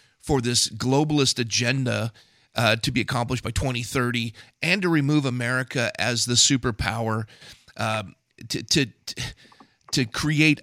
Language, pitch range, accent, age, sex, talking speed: English, 120-155 Hz, American, 40-59, male, 125 wpm